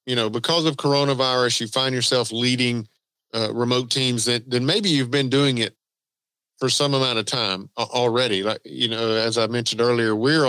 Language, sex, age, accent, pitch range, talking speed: English, male, 50-69, American, 110-140 Hz, 190 wpm